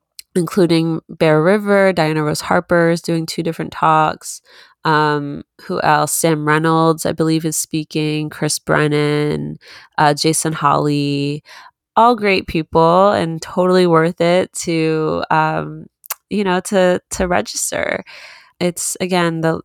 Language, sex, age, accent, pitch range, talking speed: English, female, 20-39, American, 150-180 Hz, 130 wpm